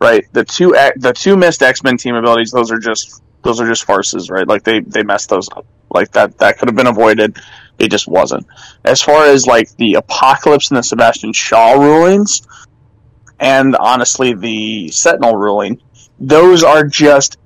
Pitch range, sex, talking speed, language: 115-145 Hz, male, 180 wpm, English